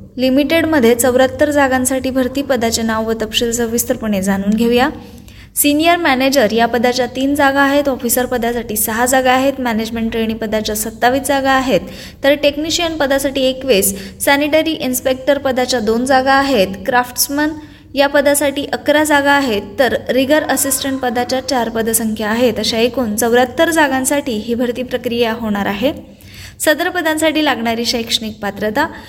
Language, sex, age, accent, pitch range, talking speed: Marathi, female, 20-39, native, 230-285 Hz, 140 wpm